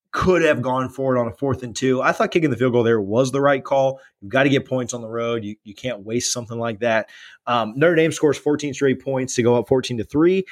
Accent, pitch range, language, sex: American, 115-150 Hz, English, male